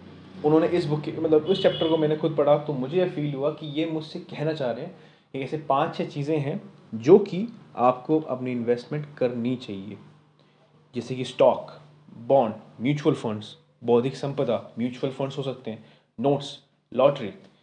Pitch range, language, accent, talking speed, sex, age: 120-155 Hz, Hindi, native, 175 wpm, male, 30-49